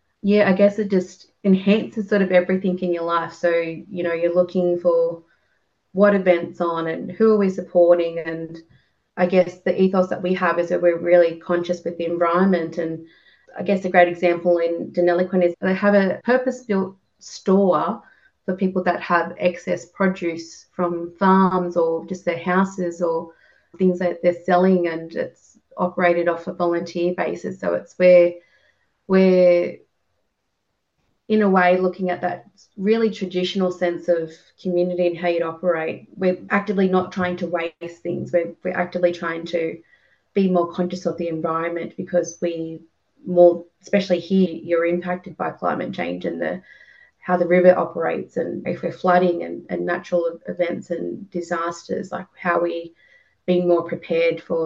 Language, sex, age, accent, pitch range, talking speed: English, female, 30-49, Australian, 170-185 Hz, 165 wpm